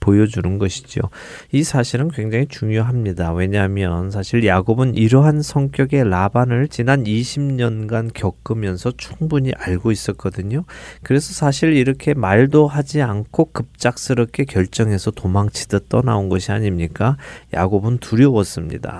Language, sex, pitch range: Korean, male, 100-135 Hz